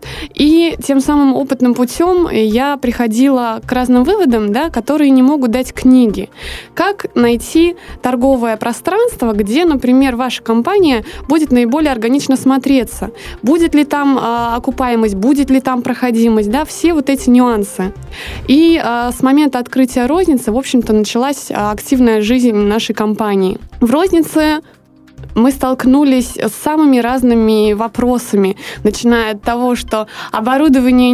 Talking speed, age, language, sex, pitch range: 130 wpm, 20-39, Russian, female, 235-285 Hz